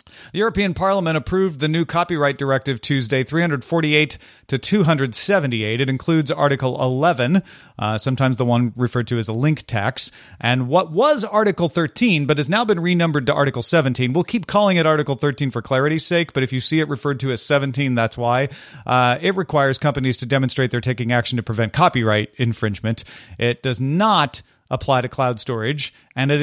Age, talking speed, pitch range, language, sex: 40-59, 185 wpm, 125-170 Hz, English, male